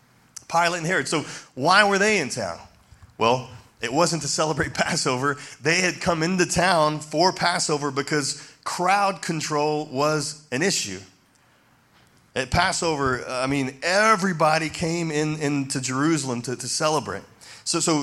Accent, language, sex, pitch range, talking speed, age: American, English, male, 130-165 Hz, 135 wpm, 30-49